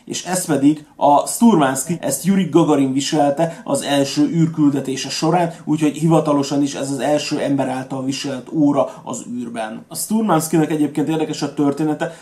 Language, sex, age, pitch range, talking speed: Hungarian, male, 30-49, 140-160 Hz, 150 wpm